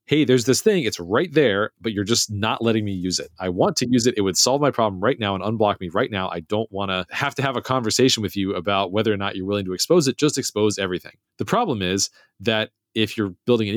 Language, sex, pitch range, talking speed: English, male, 100-125 Hz, 270 wpm